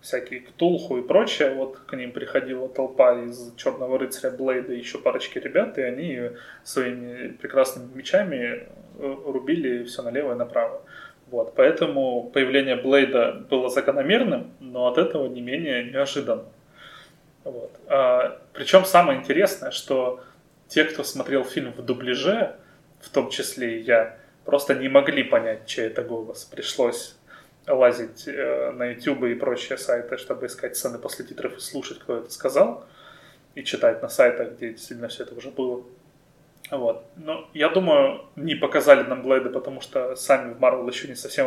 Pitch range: 125-175 Hz